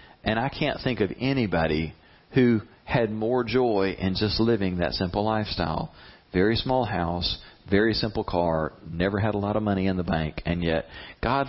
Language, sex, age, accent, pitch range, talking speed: English, male, 40-59, American, 85-115 Hz, 180 wpm